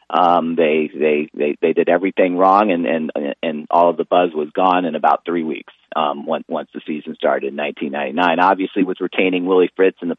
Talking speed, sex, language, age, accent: 210 wpm, male, English, 40-59, American